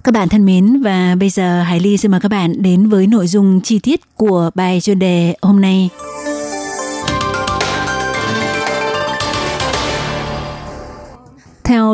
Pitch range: 185-220 Hz